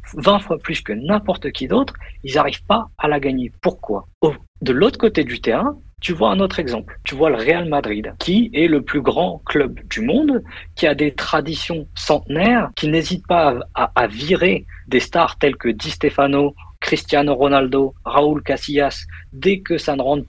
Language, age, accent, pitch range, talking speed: French, 50-69, French, 125-185 Hz, 190 wpm